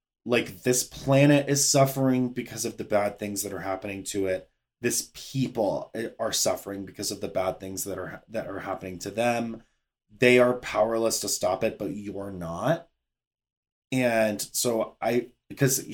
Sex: male